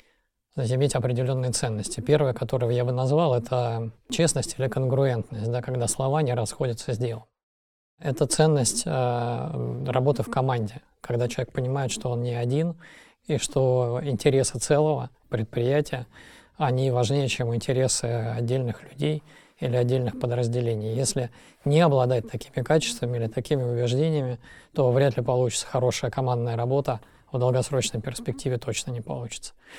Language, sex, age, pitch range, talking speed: Russian, male, 20-39, 120-140 Hz, 135 wpm